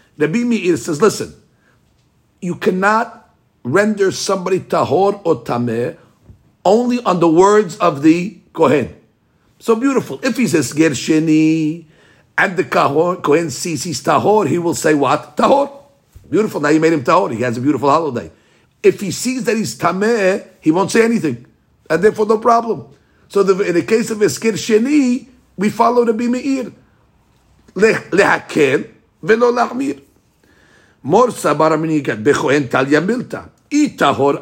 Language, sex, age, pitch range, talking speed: English, male, 50-69, 145-225 Hz, 140 wpm